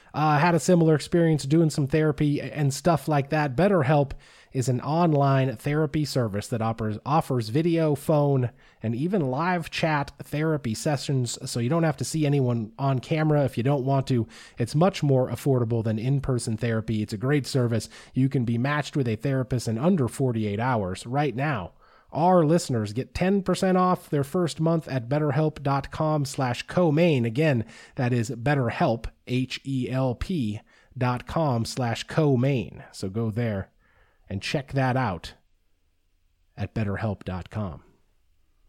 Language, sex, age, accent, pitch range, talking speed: English, male, 30-49, American, 115-155 Hz, 150 wpm